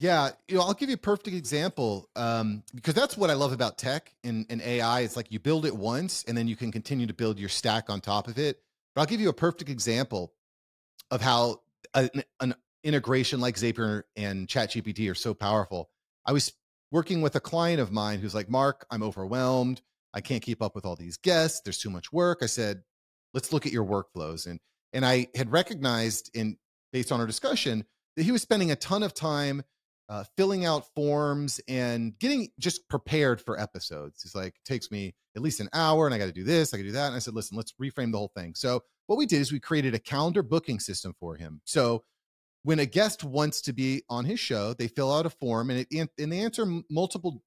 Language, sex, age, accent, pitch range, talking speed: English, male, 30-49, American, 110-150 Hz, 230 wpm